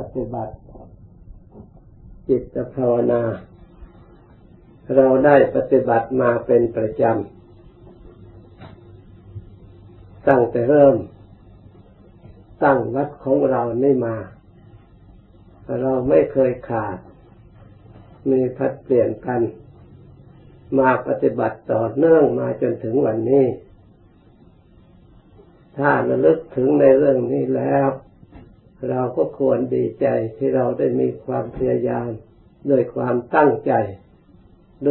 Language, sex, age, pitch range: Thai, male, 50-69, 100-135 Hz